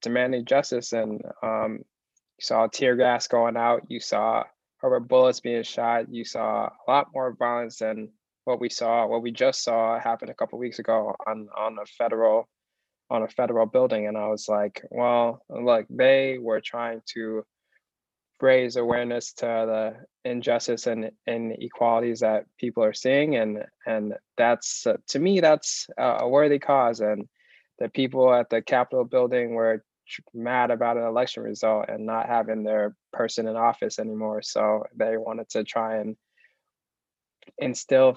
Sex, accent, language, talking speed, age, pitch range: male, American, English, 165 wpm, 20-39, 115-125 Hz